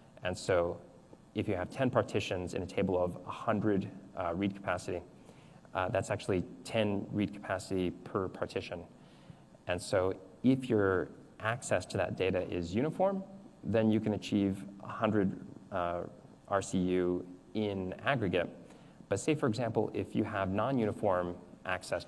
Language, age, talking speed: English, 20-39, 140 wpm